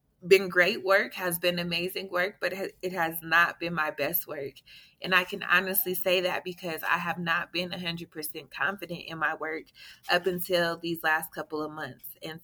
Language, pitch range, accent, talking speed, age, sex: English, 160-185 Hz, American, 200 wpm, 20-39, female